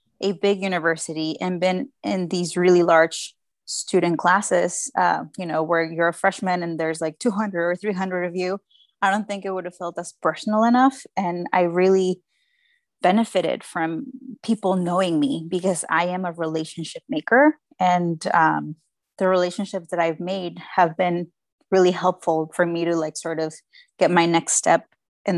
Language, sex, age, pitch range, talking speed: English, female, 20-39, 170-200 Hz, 170 wpm